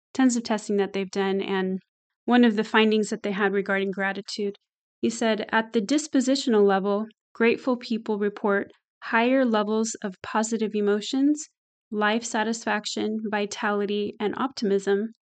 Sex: female